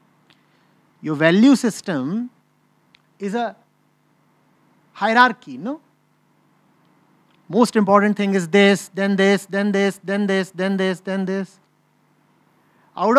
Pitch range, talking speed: 195-275 Hz, 105 wpm